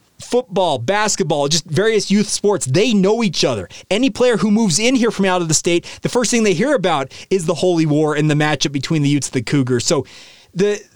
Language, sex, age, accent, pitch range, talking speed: English, male, 30-49, American, 165-205 Hz, 230 wpm